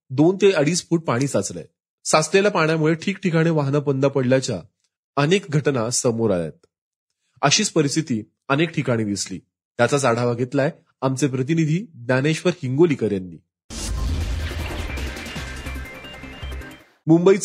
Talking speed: 110 wpm